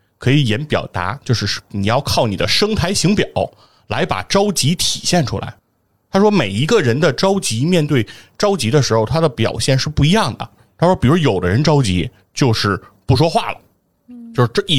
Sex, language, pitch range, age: male, Chinese, 110-150 Hz, 30-49